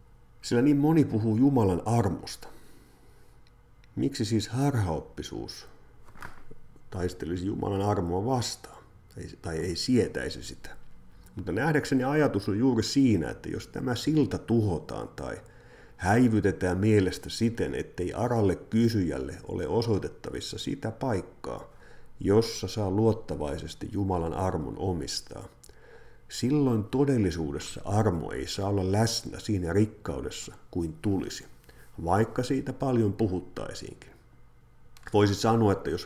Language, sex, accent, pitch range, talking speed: Finnish, male, native, 95-125 Hz, 105 wpm